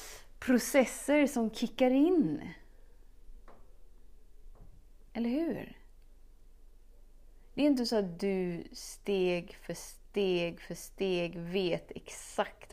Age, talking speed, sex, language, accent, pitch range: 30-49, 90 wpm, female, Swedish, native, 180-230 Hz